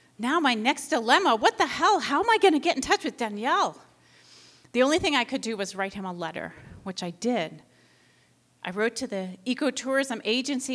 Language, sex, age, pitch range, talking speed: English, female, 30-49, 195-270 Hz, 200 wpm